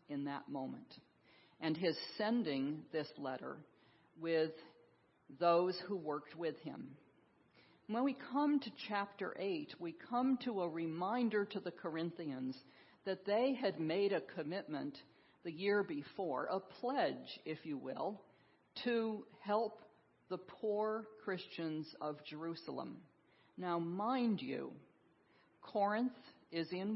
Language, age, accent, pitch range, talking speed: English, 50-69, American, 160-215 Hz, 120 wpm